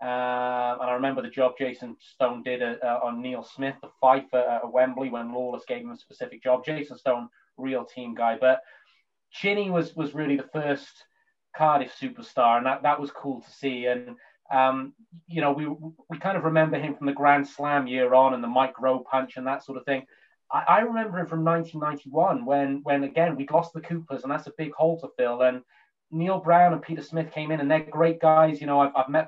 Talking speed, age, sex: 225 wpm, 30-49, male